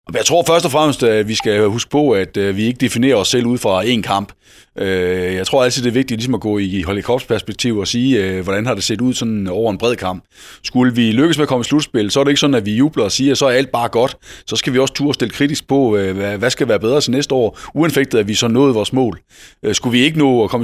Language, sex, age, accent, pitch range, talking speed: Danish, male, 30-49, native, 105-140 Hz, 280 wpm